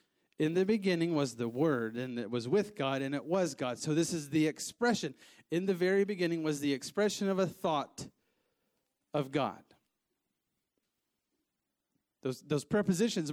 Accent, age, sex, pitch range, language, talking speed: American, 40-59, male, 140-195 Hz, English, 160 wpm